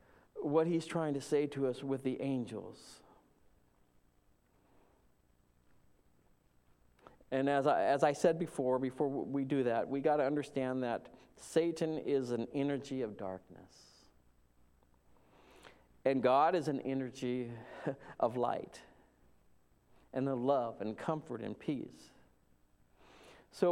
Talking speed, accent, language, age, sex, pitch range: 120 wpm, American, English, 50-69, male, 125-175 Hz